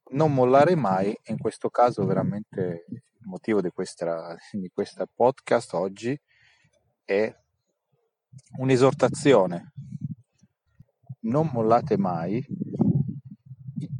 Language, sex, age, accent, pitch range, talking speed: Italian, male, 40-59, native, 105-145 Hz, 95 wpm